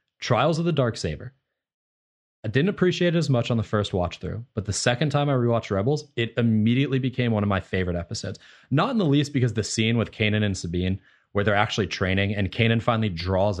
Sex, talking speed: male, 215 wpm